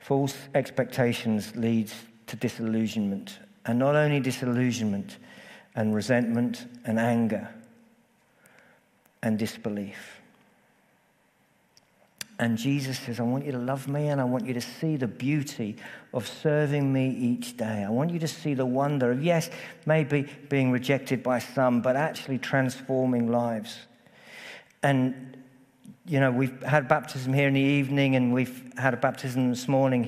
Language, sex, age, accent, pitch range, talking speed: English, male, 50-69, British, 120-145 Hz, 145 wpm